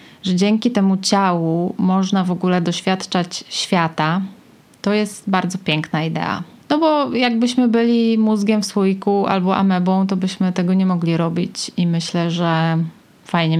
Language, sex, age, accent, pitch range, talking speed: Polish, female, 20-39, native, 170-195 Hz, 145 wpm